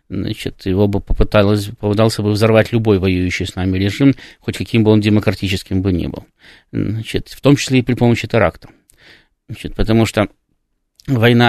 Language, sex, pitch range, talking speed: Russian, male, 100-120 Hz, 160 wpm